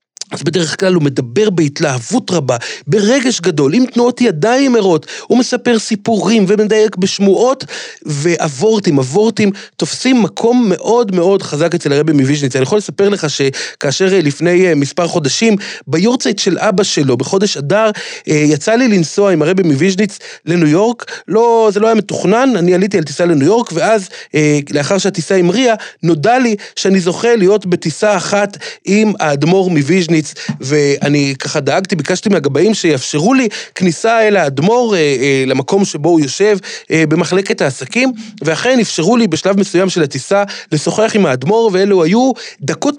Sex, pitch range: male, 160-220 Hz